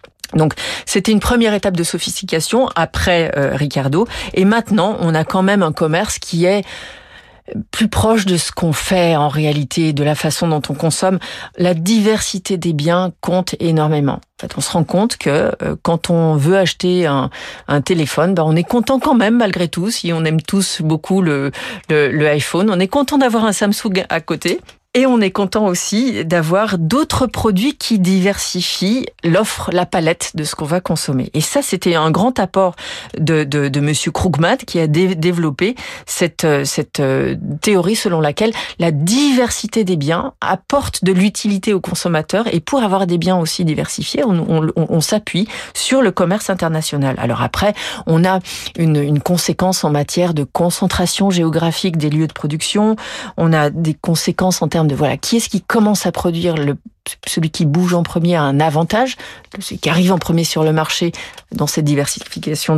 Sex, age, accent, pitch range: female, 40-59, French, 160-200 Hz